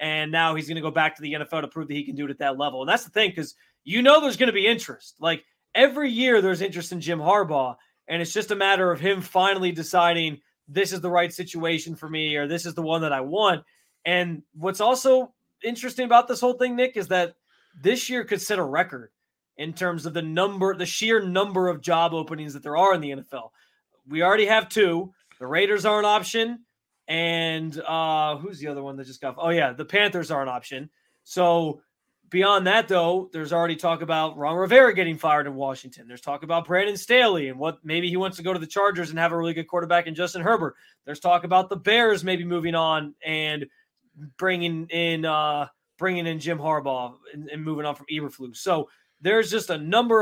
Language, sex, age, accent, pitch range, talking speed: English, male, 20-39, American, 155-195 Hz, 225 wpm